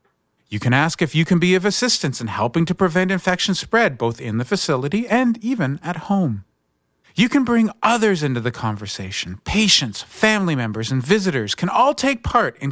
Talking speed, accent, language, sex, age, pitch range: 190 wpm, American, English, male, 40-59, 105-170 Hz